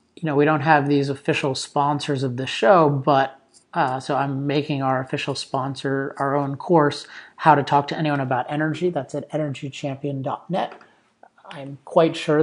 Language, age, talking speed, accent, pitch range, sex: English, 30-49, 170 wpm, American, 135-155 Hz, male